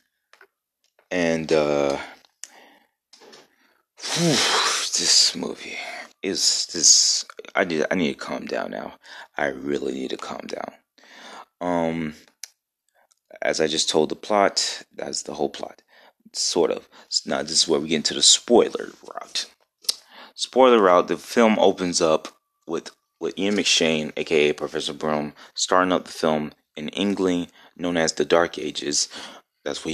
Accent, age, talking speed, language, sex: American, 30-49, 140 wpm, English, male